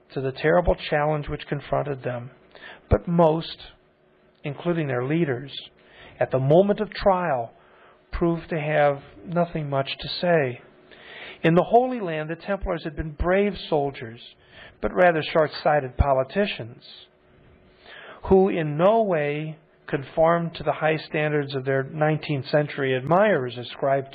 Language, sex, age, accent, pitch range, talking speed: English, male, 50-69, American, 135-160 Hz, 130 wpm